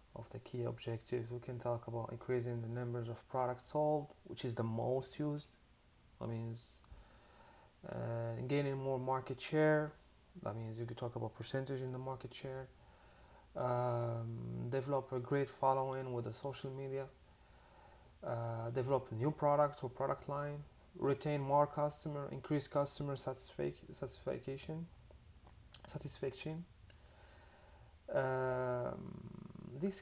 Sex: male